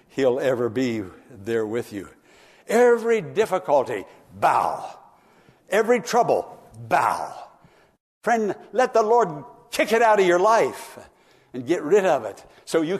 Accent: American